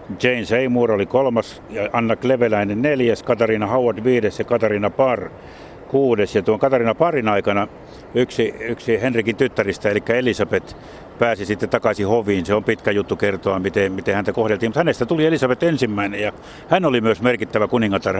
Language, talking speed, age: Finnish, 160 wpm, 60-79